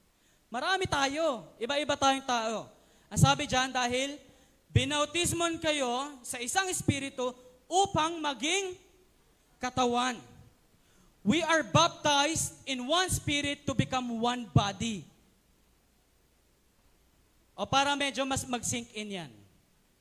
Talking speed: 110 wpm